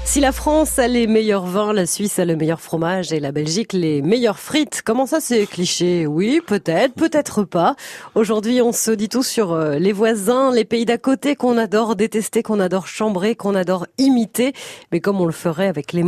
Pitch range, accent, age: 185-250 Hz, French, 40-59